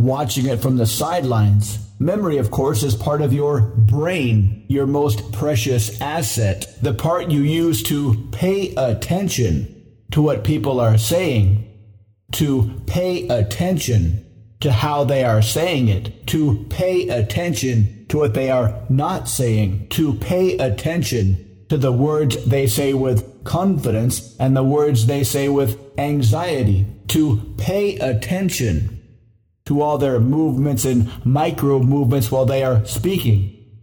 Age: 50-69